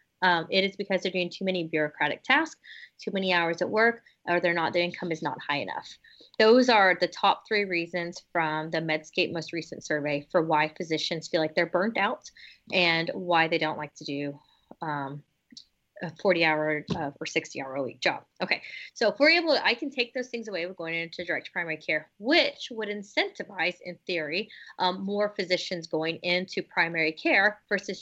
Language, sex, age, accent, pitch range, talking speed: English, female, 20-39, American, 165-210 Hz, 200 wpm